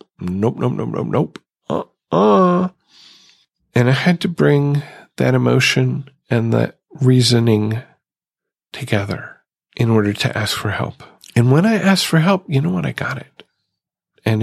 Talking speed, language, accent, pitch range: 155 wpm, English, American, 110-135 Hz